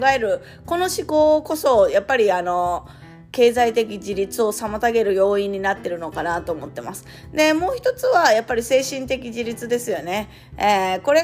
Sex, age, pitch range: female, 20-39, 205-300 Hz